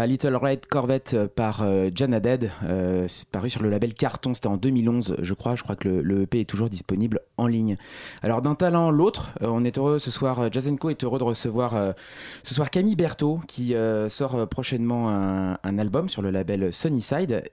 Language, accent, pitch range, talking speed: French, French, 100-130 Hz, 210 wpm